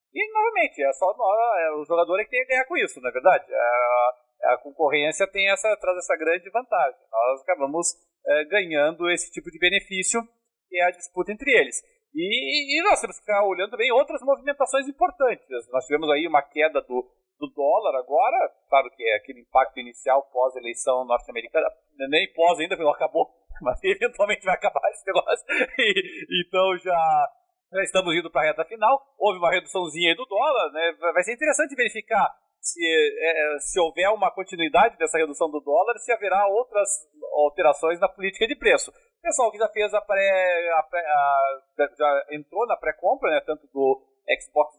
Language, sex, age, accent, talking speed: Portuguese, male, 40-59, Brazilian, 175 wpm